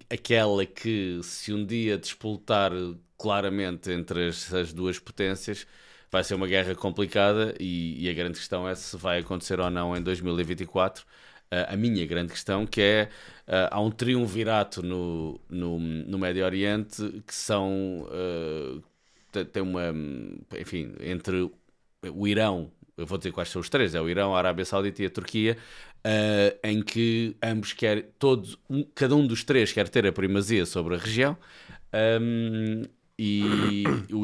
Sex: male